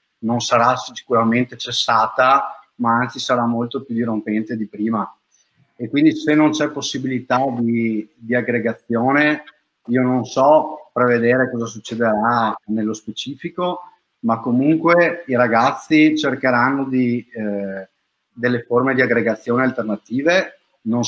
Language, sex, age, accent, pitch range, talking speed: Italian, male, 30-49, native, 115-130 Hz, 120 wpm